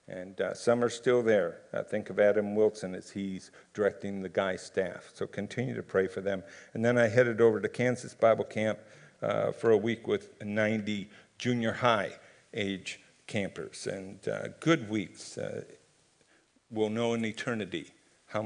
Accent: American